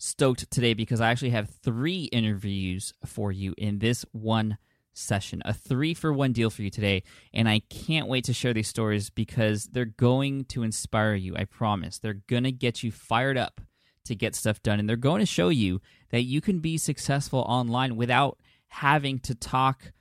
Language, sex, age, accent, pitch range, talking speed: English, male, 20-39, American, 105-135 Hz, 195 wpm